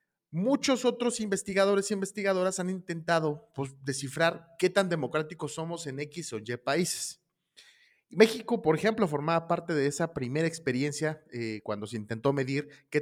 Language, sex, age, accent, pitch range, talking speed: Spanish, male, 30-49, Mexican, 130-180 Hz, 150 wpm